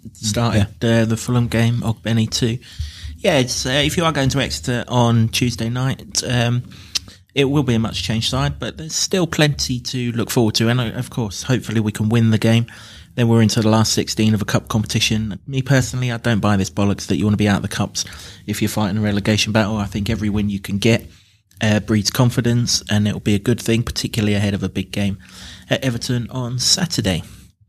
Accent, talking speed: British, 220 wpm